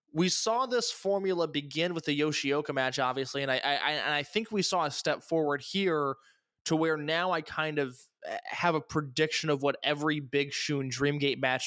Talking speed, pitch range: 195 wpm, 135-175 Hz